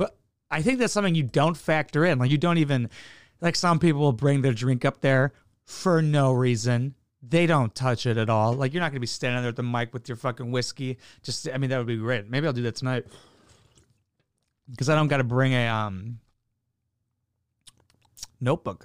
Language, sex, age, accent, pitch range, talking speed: English, male, 30-49, American, 115-140 Hz, 210 wpm